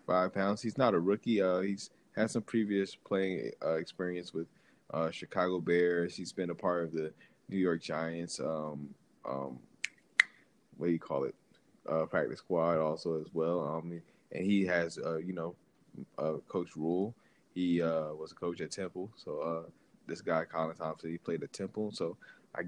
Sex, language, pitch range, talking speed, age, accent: male, English, 80-95 Hz, 185 wpm, 20-39, American